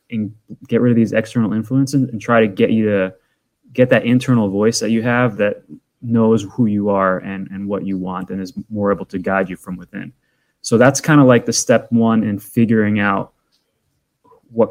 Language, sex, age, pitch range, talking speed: English, male, 20-39, 100-125 Hz, 210 wpm